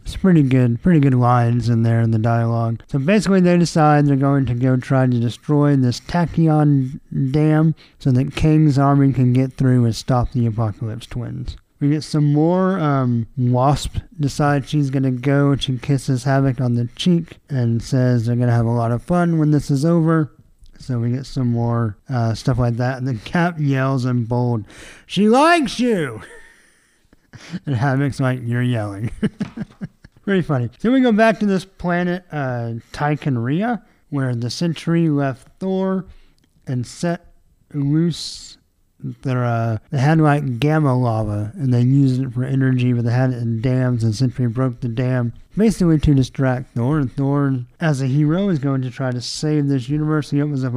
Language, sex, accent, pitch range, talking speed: English, male, American, 120-155 Hz, 180 wpm